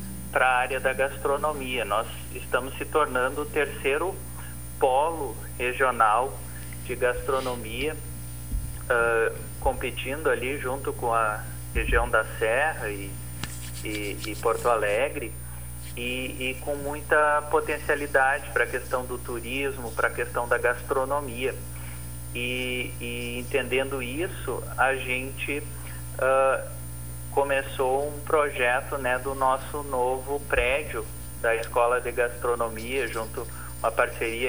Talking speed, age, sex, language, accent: 110 wpm, 30-49, male, Portuguese, Brazilian